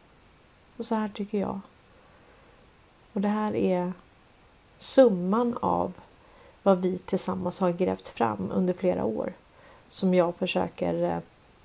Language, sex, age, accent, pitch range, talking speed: Swedish, female, 30-49, native, 175-220 Hz, 120 wpm